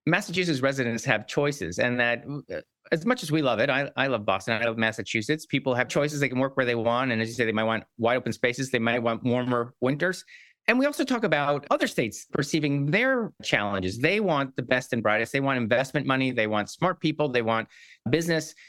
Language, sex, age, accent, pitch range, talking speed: English, male, 40-59, American, 125-185 Hz, 225 wpm